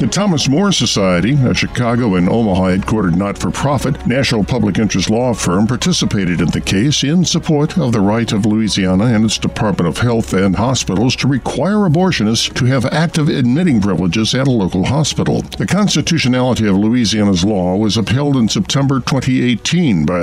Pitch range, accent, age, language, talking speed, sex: 100-140 Hz, American, 60-79, English, 170 wpm, male